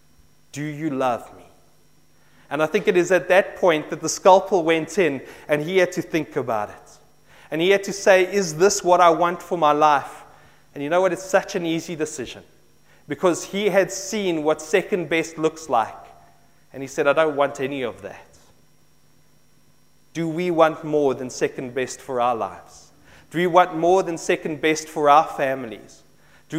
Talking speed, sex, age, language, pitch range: 190 wpm, male, 30-49, English, 130-175 Hz